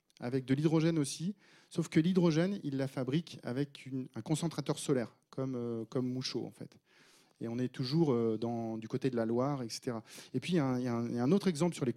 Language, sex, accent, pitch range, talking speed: French, male, French, 115-150 Hz, 230 wpm